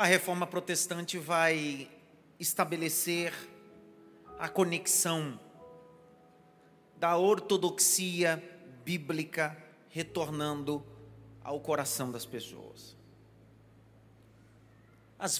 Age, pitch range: 40-59, 145-185 Hz